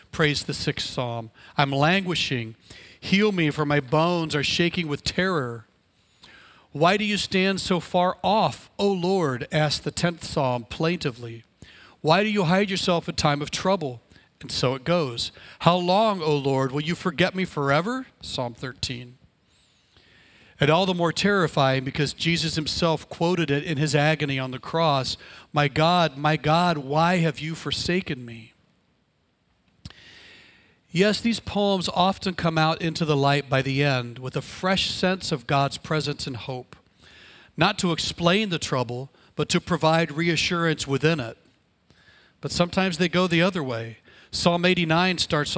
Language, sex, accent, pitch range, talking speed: English, male, American, 140-175 Hz, 160 wpm